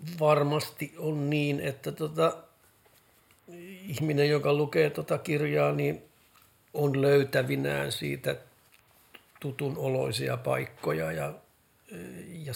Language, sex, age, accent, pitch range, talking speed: Finnish, male, 60-79, native, 130-150 Hz, 90 wpm